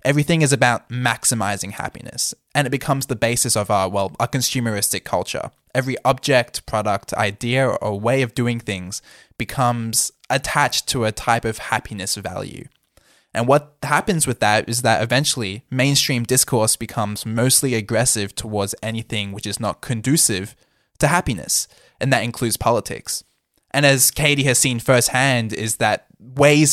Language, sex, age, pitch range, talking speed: English, male, 10-29, 110-135 Hz, 150 wpm